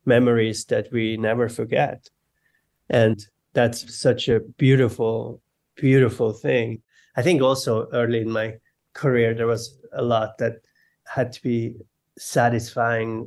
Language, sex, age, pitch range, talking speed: English, male, 30-49, 115-130 Hz, 125 wpm